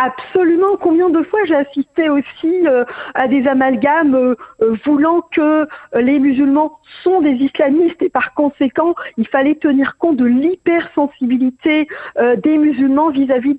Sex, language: female, French